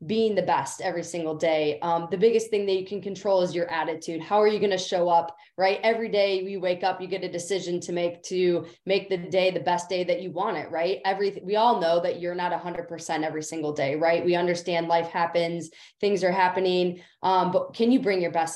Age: 20-39